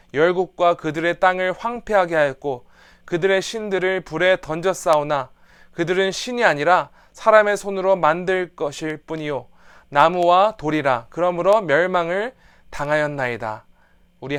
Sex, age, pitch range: male, 20-39, 145-190 Hz